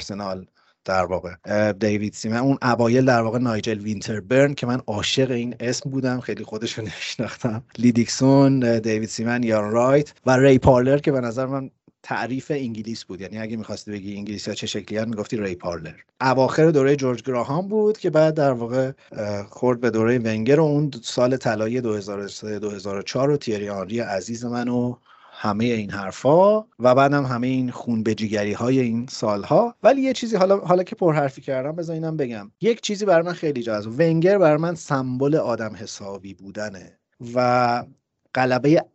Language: Persian